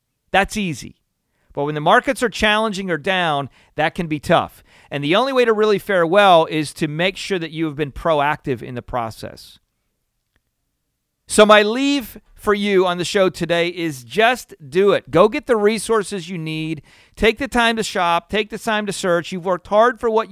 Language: English